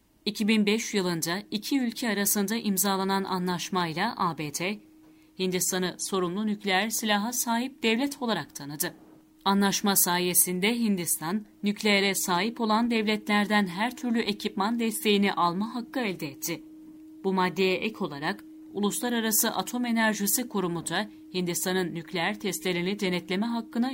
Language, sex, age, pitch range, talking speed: Turkish, female, 40-59, 185-230 Hz, 115 wpm